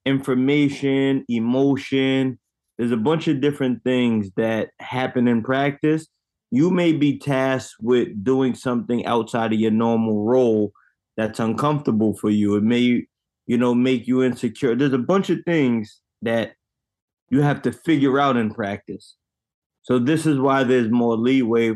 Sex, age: male, 20-39